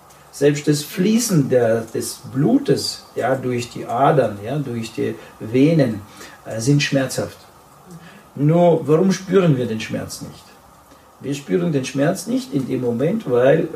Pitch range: 125-165 Hz